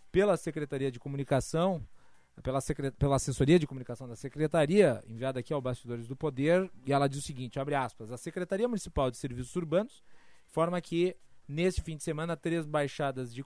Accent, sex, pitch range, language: Brazilian, male, 135-165 Hz, Portuguese